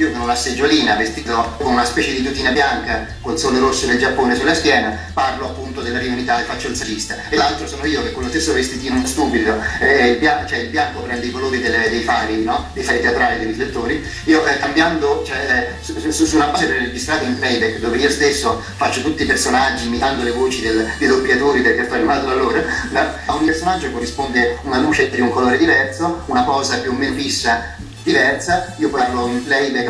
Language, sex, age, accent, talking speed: Italian, male, 30-49, native, 215 wpm